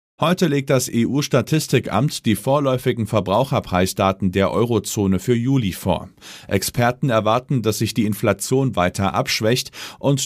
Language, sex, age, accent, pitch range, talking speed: German, male, 40-59, German, 100-135 Hz, 125 wpm